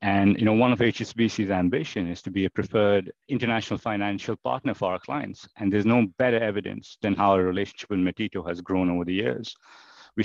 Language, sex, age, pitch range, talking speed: English, male, 50-69, 95-110 Hz, 205 wpm